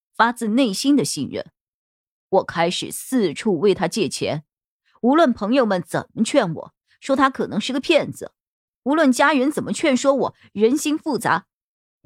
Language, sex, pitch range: Chinese, female, 170-245 Hz